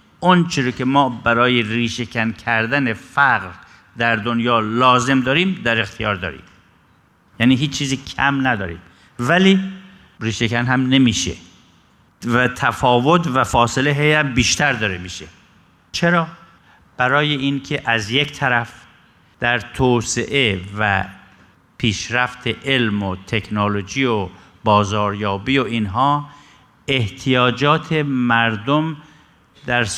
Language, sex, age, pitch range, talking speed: Persian, male, 50-69, 110-140 Hz, 105 wpm